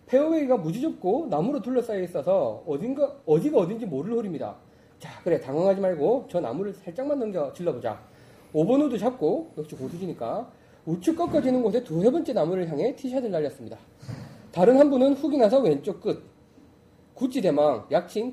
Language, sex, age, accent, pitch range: Korean, male, 30-49, native, 175-260 Hz